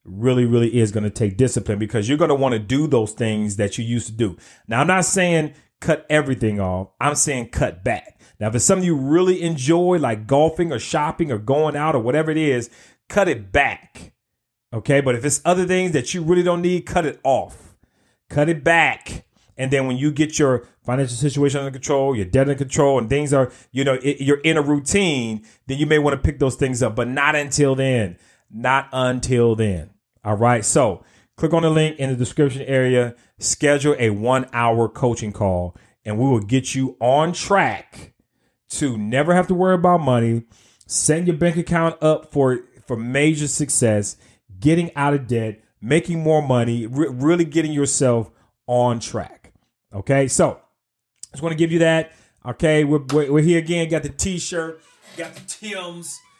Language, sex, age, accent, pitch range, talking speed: English, male, 30-49, American, 120-155 Hz, 195 wpm